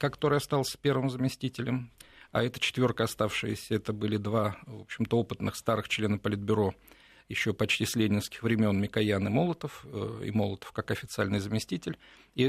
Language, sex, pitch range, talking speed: Russian, male, 105-130 Hz, 150 wpm